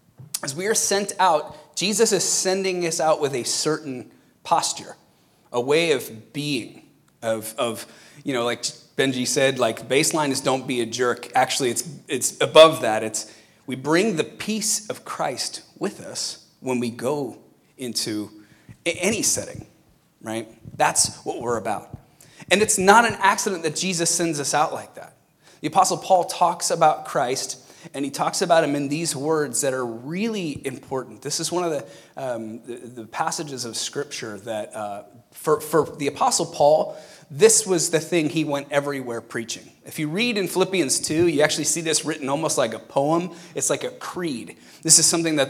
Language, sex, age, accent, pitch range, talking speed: English, male, 30-49, American, 125-170 Hz, 180 wpm